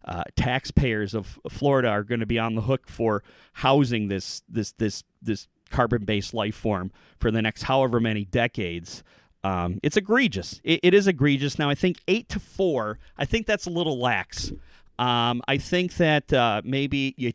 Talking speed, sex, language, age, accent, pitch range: 180 wpm, male, English, 40-59, American, 110-140 Hz